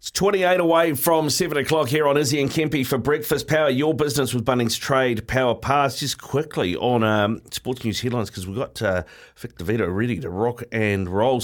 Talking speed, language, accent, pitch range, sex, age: 205 wpm, English, Australian, 105-130 Hz, male, 40-59